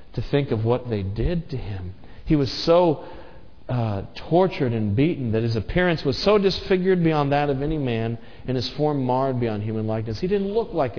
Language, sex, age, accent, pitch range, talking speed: English, male, 40-59, American, 105-160 Hz, 200 wpm